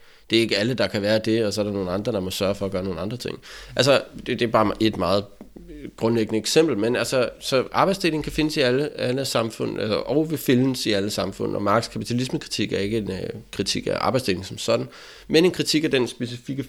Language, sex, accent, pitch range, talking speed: Danish, male, native, 105-125 Hz, 235 wpm